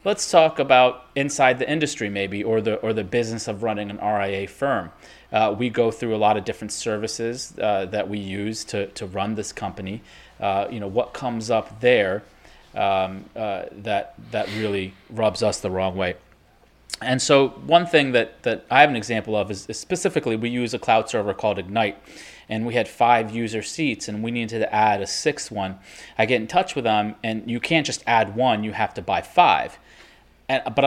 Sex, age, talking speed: male, 30-49, 205 wpm